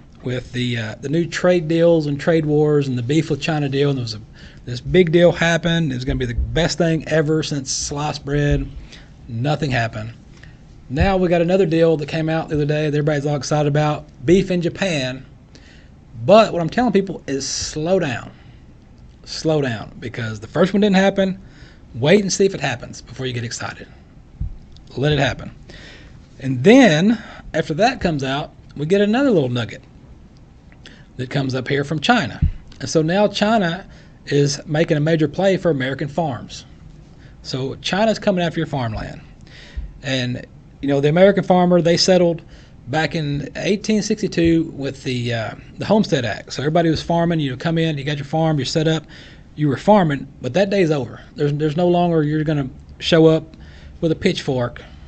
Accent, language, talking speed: American, English, 185 wpm